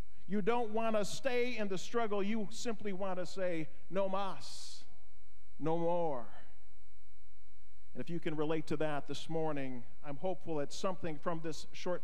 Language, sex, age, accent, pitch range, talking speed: English, male, 50-69, American, 120-195 Hz, 165 wpm